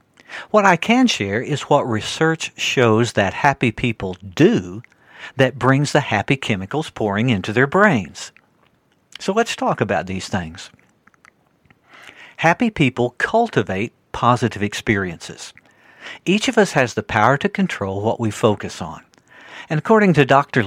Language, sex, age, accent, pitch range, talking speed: English, male, 60-79, American, 110-160 Hz, 140 wpm